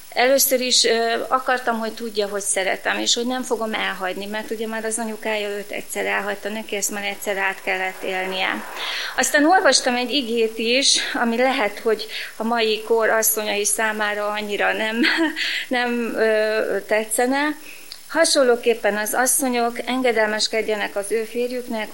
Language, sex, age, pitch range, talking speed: Hungarian, female, 30-49, 210-245 Hz, 140 wpm